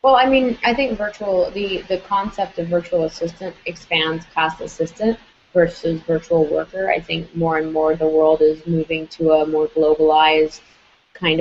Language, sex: English, female